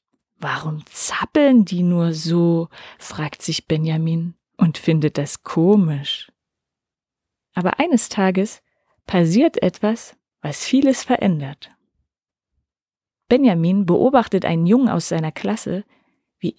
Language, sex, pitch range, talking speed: German, female, 170-240 Hz, 100 wpm